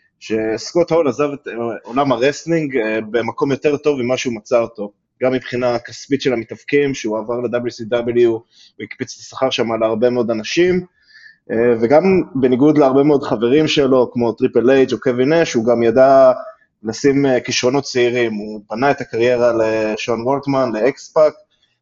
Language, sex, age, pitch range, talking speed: Hebrew, male, 20-39, 115-140 Hz, 145 wpm